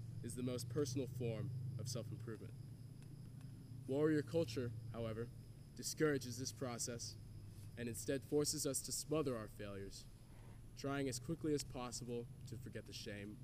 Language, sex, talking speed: English, male, 135 wpm